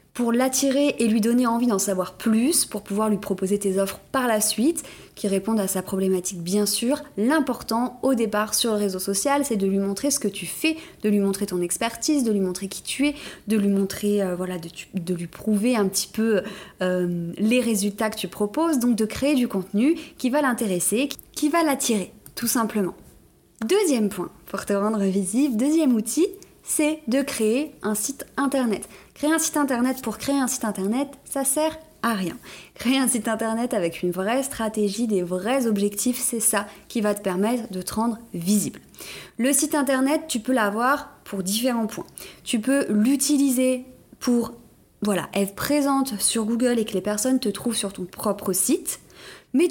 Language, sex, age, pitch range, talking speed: French, female, 20-39, 200-270 Hz, 190 wpm